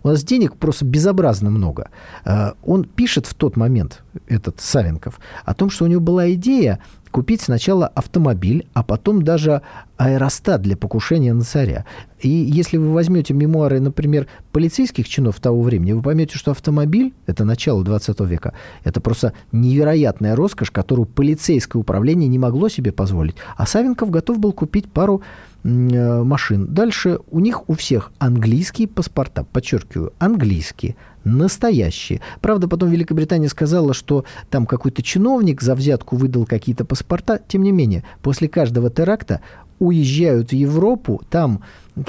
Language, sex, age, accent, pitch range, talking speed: Russian, male, 40-59, native, 115-170 Hz, 145 wpm